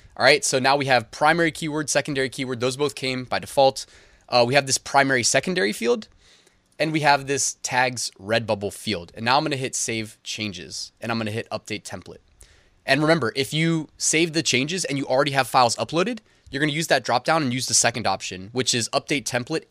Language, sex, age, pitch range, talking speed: English, male, 20-39, 105-140 Hz, 225 wpm